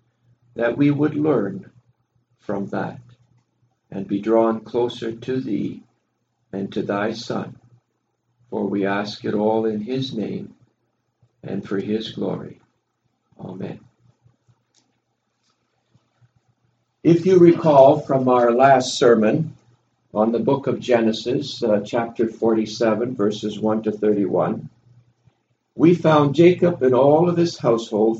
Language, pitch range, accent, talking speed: English, 115-140 Hz, American, 120 wpm